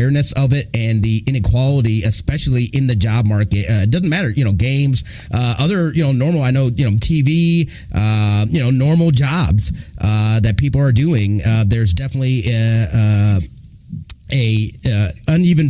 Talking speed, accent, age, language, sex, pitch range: 170 wpm, American, 30-49, English, male, 115-145 Hz